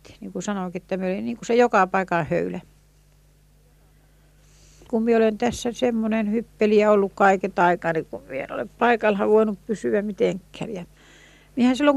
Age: 60-79